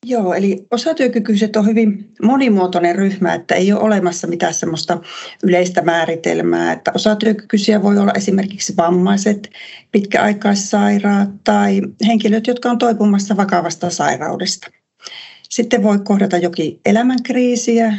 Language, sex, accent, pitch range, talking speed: Finnish, female, native, 180-220 Hz, 115 wpm